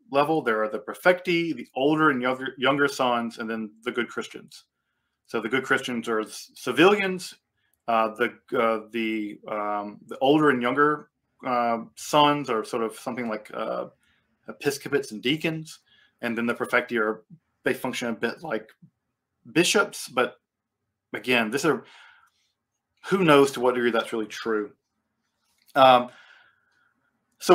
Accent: American